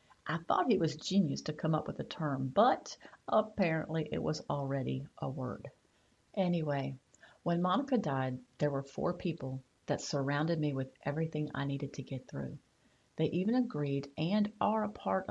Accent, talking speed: American, 170 wpm